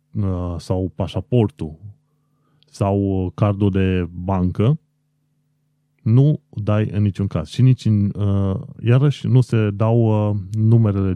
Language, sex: Romanian, male